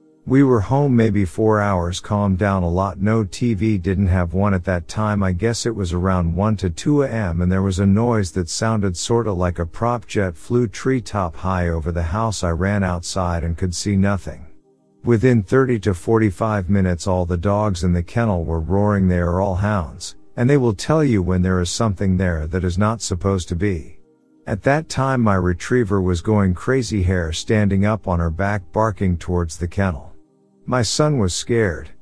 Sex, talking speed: male, 200 wpm